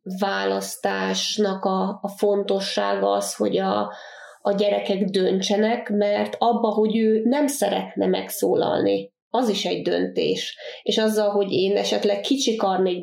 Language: Hungarian